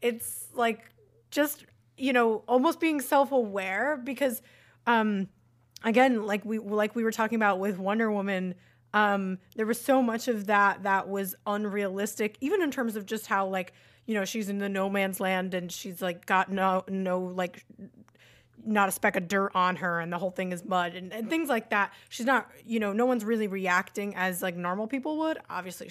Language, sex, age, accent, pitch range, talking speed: English, female, 20-39, American, 190-230 Hz, 195 wpm